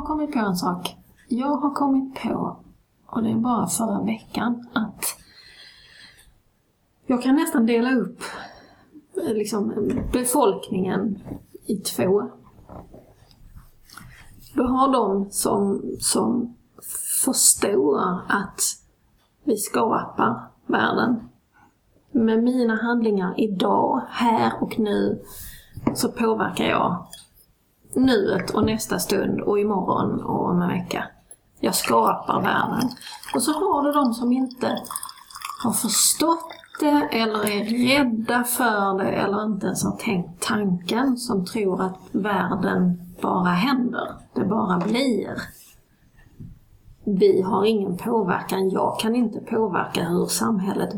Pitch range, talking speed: 205-255 Hz, 115 wpm